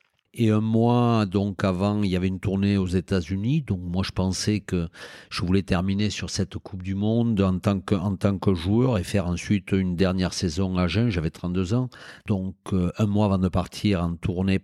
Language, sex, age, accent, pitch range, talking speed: French, male, 50-69, French, 95-105 Hz, 210 wpm